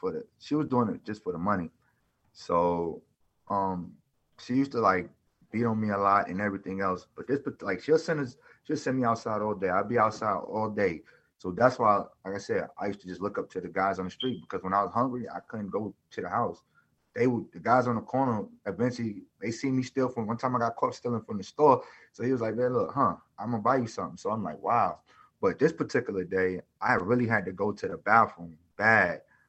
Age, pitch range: 30-49, 100-120 Hz